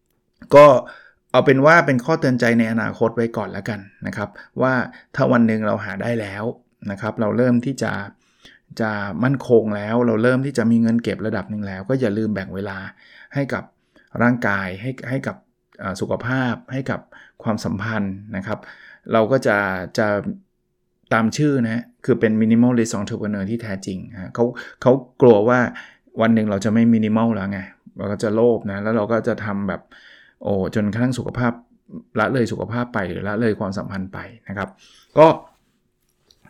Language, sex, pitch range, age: Thai, male, 105-130 Hz, 20-39